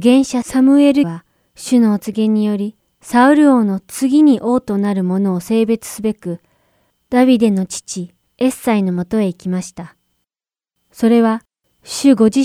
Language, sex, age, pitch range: Japanese, female, 20-39, 190-245 Hz